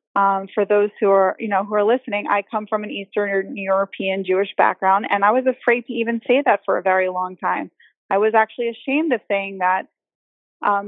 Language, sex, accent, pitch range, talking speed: English, female, American, 200-235 Hz, 215 wpm